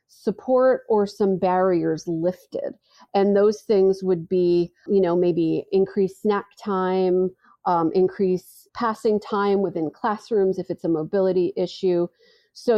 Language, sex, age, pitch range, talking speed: English, female, 40-59, 180-215 Hz, 130 wpm